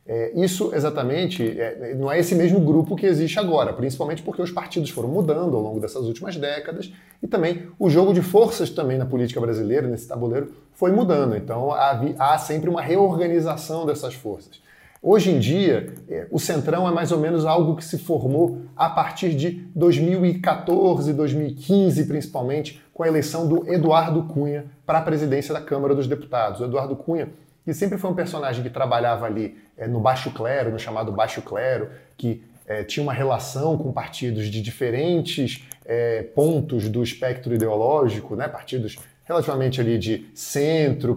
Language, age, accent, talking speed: Portuguese, 40-59, Brazilian, 165 wpm